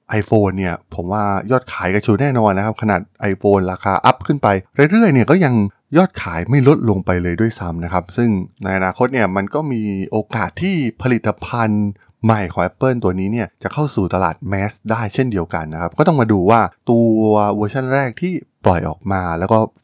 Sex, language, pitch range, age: male, Thai, 95-120 Hz, 20-39